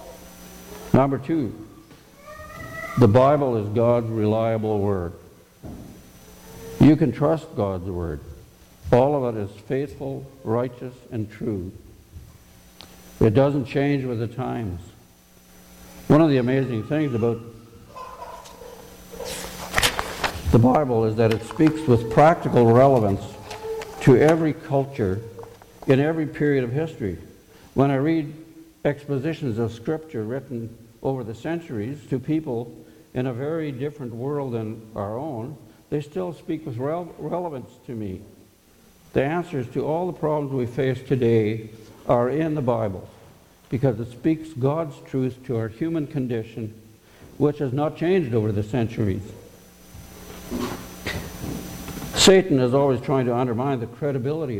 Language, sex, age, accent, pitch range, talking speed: English, male, 60-79, American, 110-145 Hz, 125 wpm